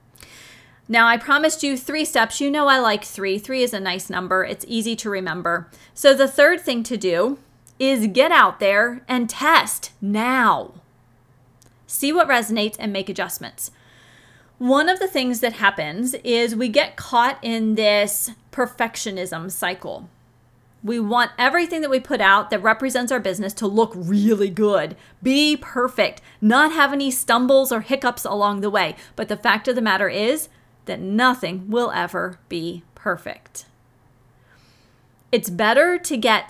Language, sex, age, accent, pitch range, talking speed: English, female, 30-49, American, 180-250 Hz, 160 wpm